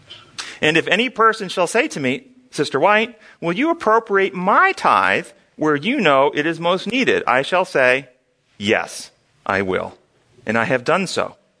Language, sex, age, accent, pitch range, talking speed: English, male, 40-59, American, 135-205 Hz, 170 wpm